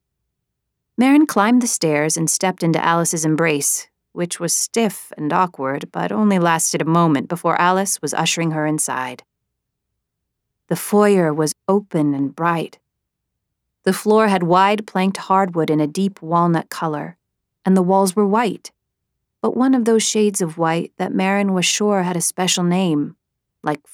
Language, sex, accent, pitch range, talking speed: English, female, American, 160-195 Hz, 160 wpm